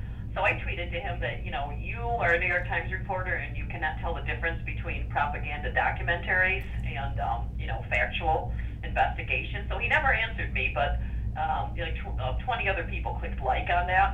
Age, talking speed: 50-69, 200 wpm